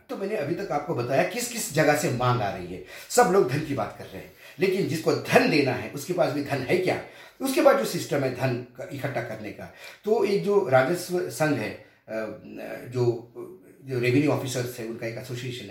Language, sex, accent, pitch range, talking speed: Hindi, male, native, 125-175 Hz, 215 wpm